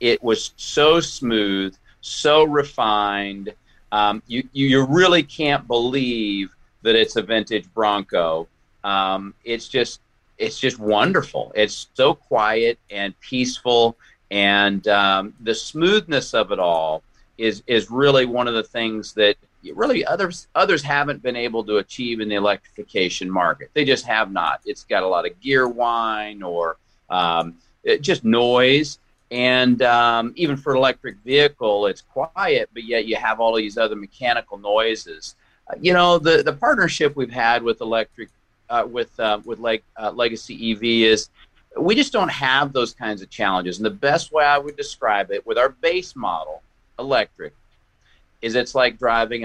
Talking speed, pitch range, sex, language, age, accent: 160 wpm, 105-130 Hz, male, English, 40-59, American